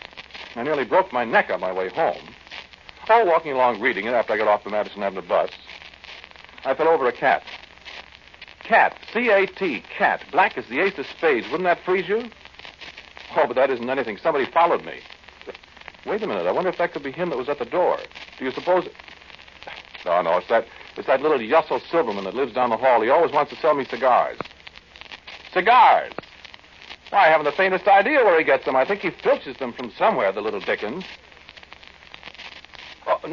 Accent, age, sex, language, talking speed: American, 60-79, male, English, 200 wpm